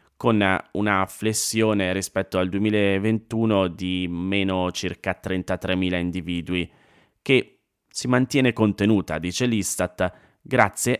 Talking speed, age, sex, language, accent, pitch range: 100 wpm, 20-39, male, Italian, native, 95-115 Hz